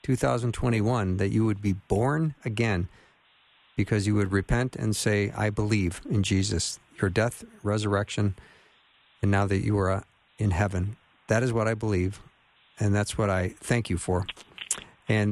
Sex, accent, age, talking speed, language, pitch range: male, American, 50-69, 155 wpm, English, 105-125 Hz